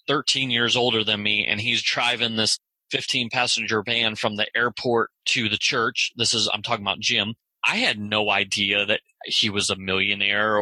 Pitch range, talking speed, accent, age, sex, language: 105-120 Hz, 185 wpm, American, 30-49, male, English